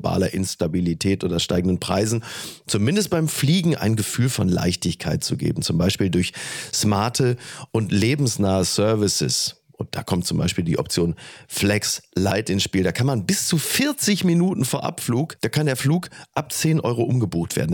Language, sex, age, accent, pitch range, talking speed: German, male, 40-59, German, 95-130 Hz, 170 wpm